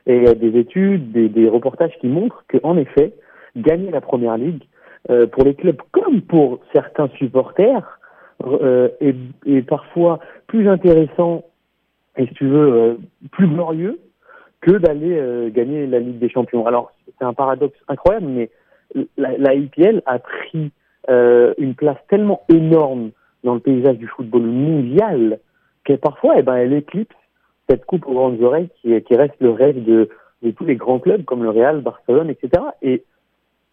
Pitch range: 120-160 Hz